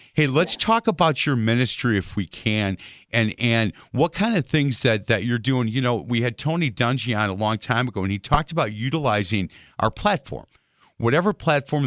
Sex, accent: male, American